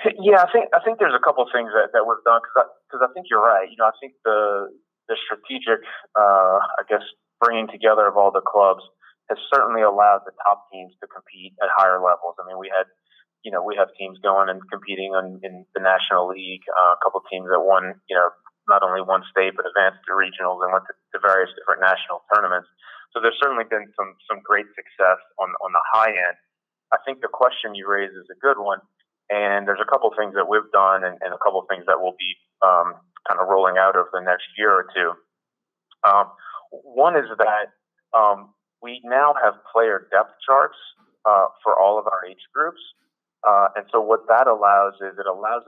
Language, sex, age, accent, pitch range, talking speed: English, male, 30-49, American, 95-110 Hz, 220 wpm